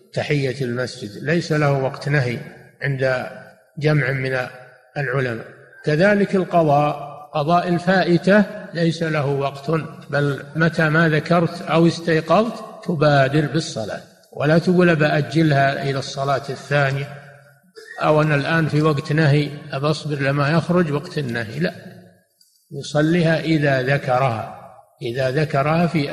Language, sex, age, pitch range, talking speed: Arabic, male, 60-79, 140-165 Hz, 115 wpm